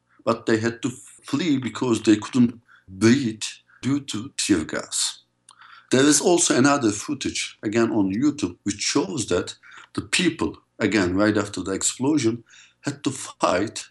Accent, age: Turkish, 50-69